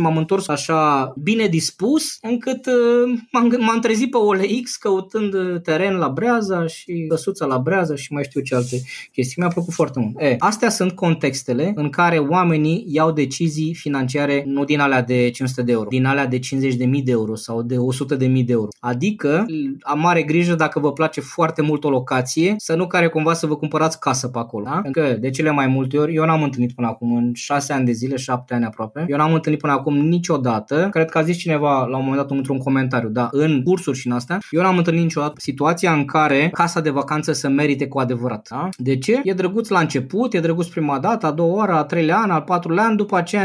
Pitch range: 135-175 Hz